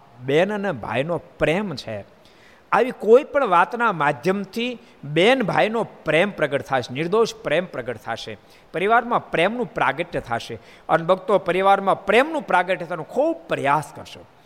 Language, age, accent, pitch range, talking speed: Gujarati, 50-69, native, 155-225 Hz, 60 wpm